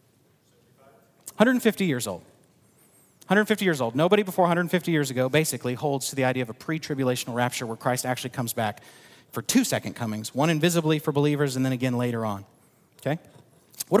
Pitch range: 145-210 Hz